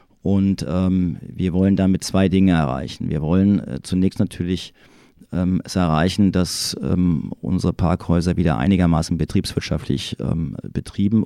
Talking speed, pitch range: 135 wpm, 90-105 Hz